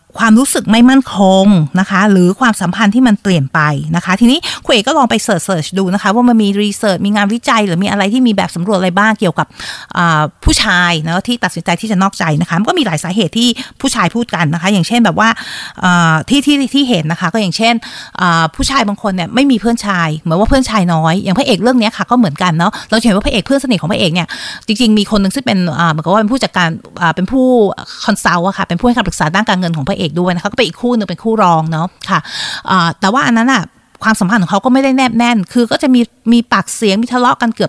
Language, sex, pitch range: Thai, female, 180-235 Hz